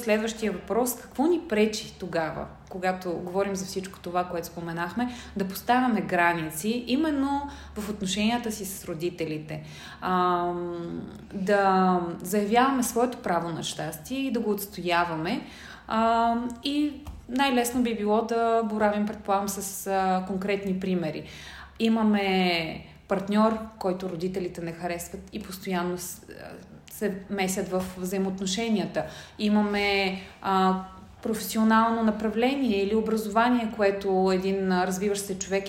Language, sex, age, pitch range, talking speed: Bulgarian, female, 20-39, 185-220 Hz, 110 wpm